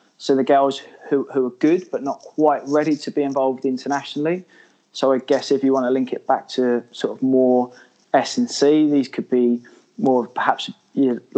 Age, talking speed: 20-39, 200 wpm